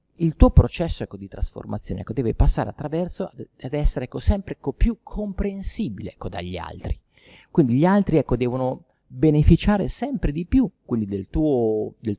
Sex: male